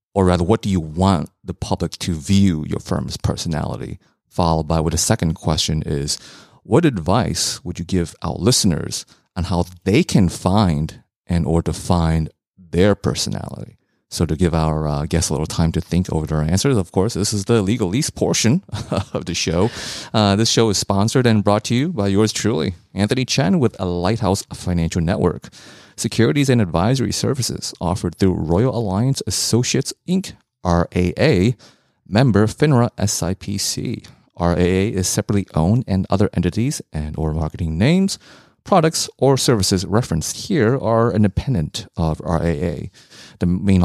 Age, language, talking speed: 30-49, English, 160 wpm